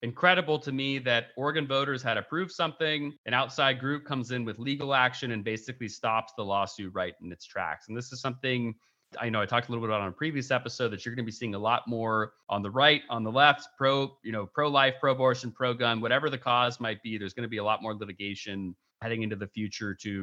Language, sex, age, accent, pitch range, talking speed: English, male, 30-49, American, 110-135 Hz, 240 wpm